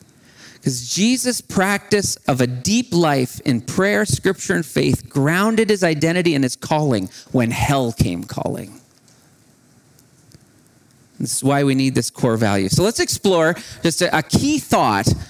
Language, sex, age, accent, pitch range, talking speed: English, male, 40-59, American, 125-175 Hz, 150 wpm